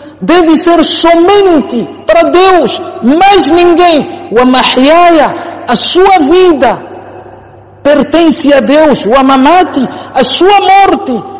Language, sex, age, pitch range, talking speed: Portuguese, male, 50-69, 270-335 Hz, 105 wpm